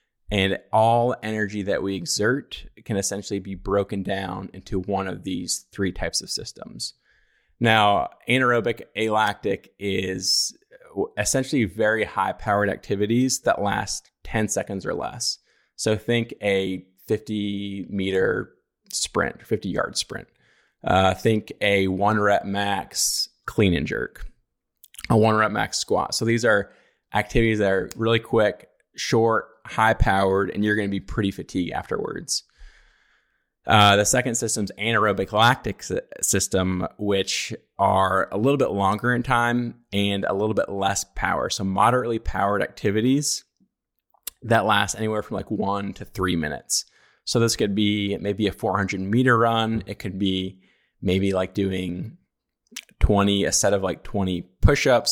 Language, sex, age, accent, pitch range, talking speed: English, male, 20-39, American, 95-110 Hz, 145 wpm